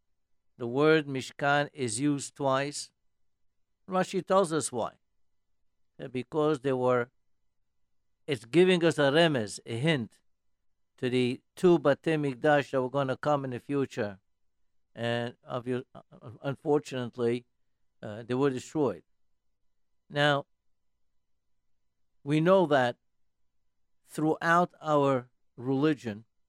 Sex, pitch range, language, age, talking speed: male, 105-150 Hz, English, 60-79, 105 wpm